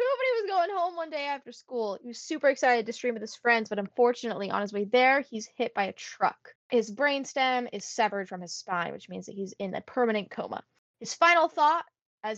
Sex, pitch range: female, 220-290 Hz